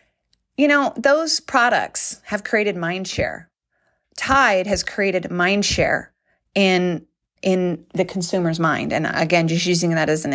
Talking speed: 135 wpm